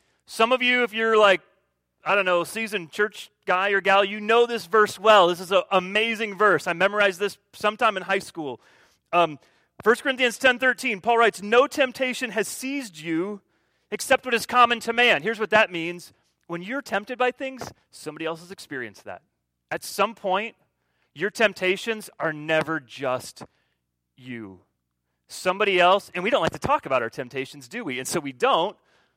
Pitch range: 165-235 Hz